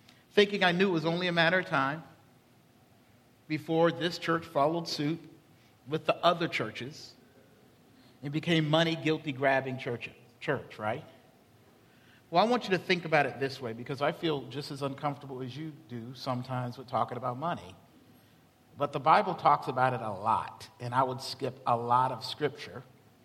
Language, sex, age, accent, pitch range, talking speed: English, male, 50-69, American, 125-170 Hz, 170 wpm